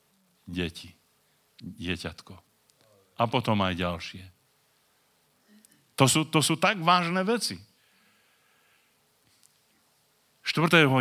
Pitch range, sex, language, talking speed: 95-130 Hz, male, Czech, 70 wpm